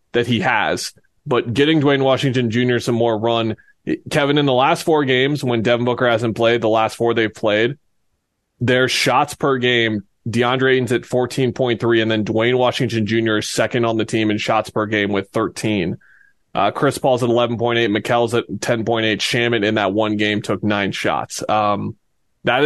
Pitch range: 110-125 Hz